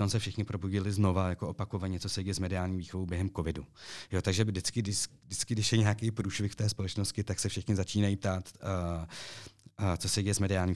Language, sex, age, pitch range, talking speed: Czech, male, 30-49, 90-105 Hz, 200 wpm